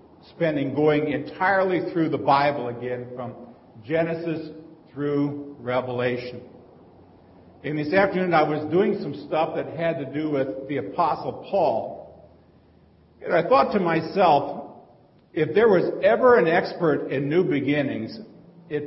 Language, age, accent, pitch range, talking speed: English, 50-69, American, 145-190 Hz, 135 wpm